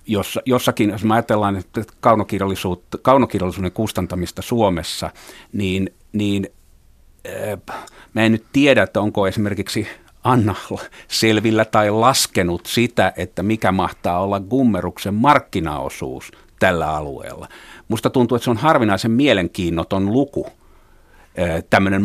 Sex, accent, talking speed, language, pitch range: male, native, 105 wpm, Finnish, 90-115 Hz